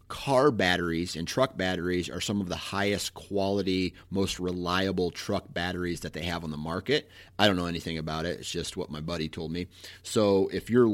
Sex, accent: male, American